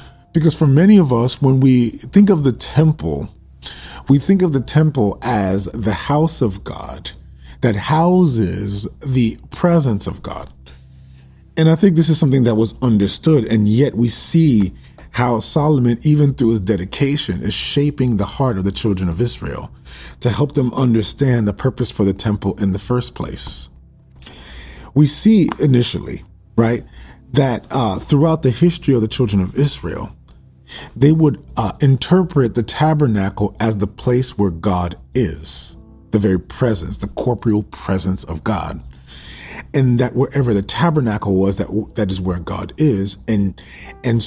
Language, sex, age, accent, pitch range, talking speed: English, male, 40-59, American, 95-135 Hz, 155 wpm